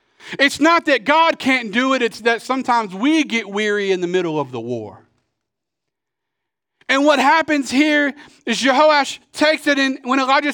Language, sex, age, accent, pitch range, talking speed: English, male, 40-59, American, 190-275 Hz, 170 wpm